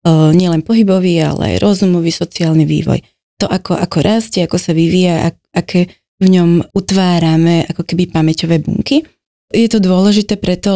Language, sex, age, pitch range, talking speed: Slovak, female, 20-39, 165-190 Hz, 150 wpm